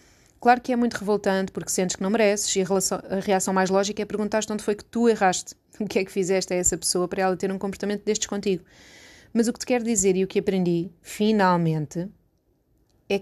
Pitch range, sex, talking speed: 180-215 Hz, female, 225 wpm